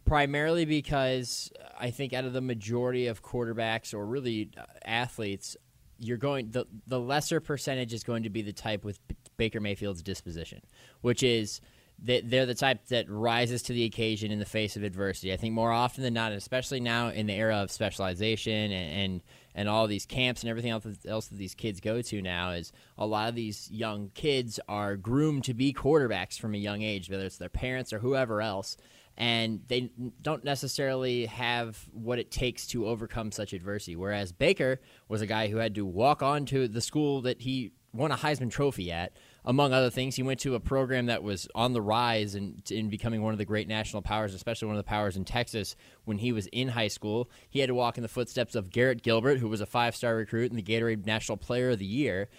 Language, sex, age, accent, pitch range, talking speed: English, male, 20-39, American, 105-125 Hz, 215 wpm